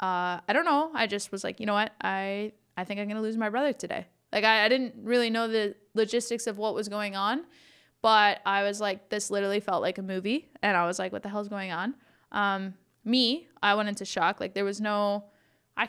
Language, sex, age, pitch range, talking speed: English, female, 20-39, 185-220 Hz, 240 wpm